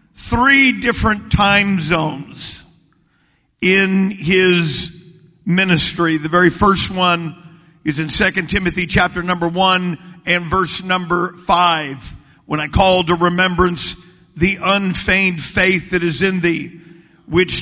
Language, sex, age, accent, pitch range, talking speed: English, male, 50-69, American, 170-205 Hz, 120 wpm